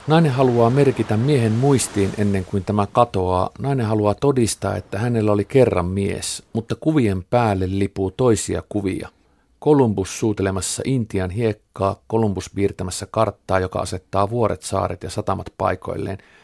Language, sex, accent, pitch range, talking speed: Finnish, male, native, 95-120 Hz, 135 wpm